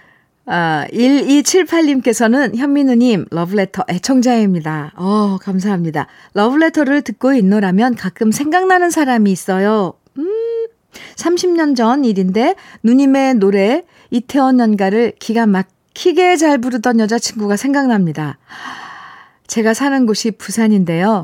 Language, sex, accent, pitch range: Korean, female, native, 180-255 Hz